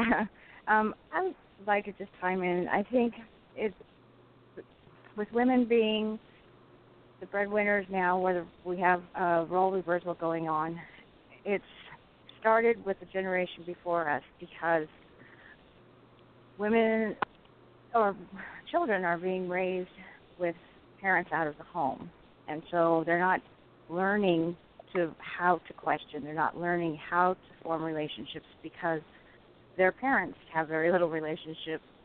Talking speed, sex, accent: 125 wpm, female, American